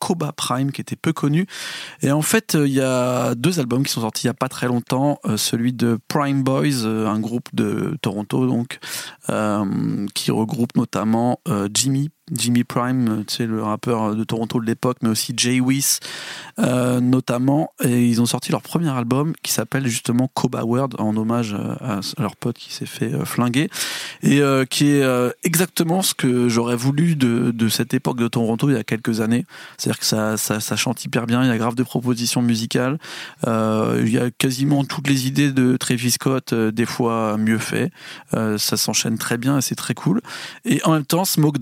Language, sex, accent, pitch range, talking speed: French, male, French, 115-135 Hz, 210 wpm